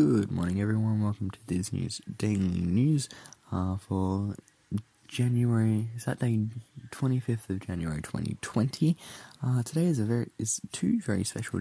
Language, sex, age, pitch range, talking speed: English, male, 20-39, 100-125 Hz, 130 wpm